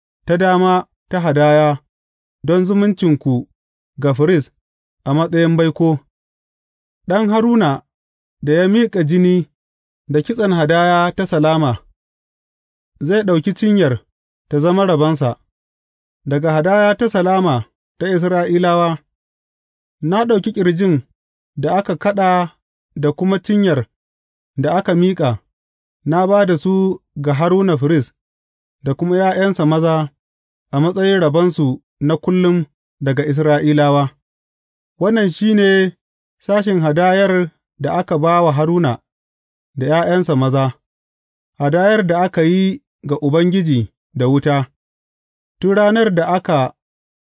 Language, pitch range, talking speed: English, 125-180 Hz, 105 wpm